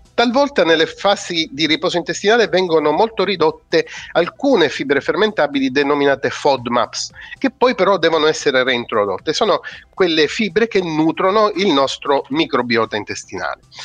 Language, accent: Italian, native